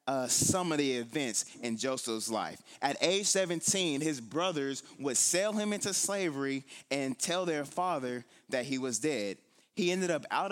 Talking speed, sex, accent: 170 wpm, male, American